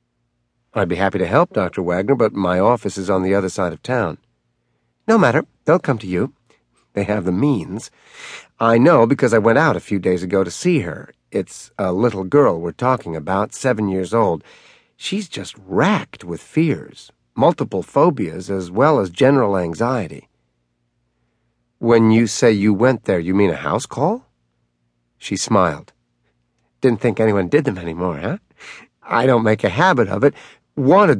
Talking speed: 175 wpm